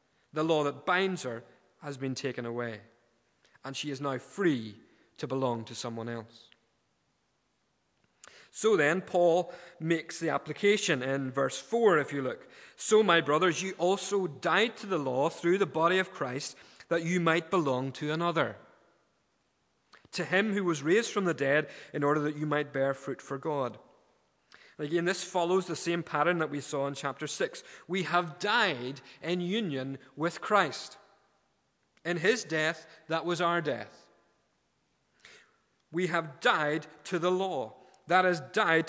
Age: 30-49